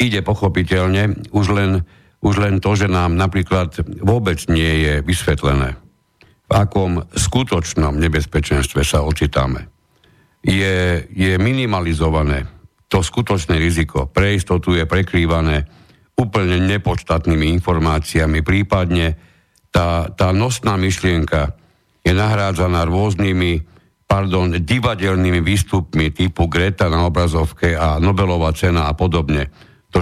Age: 60-79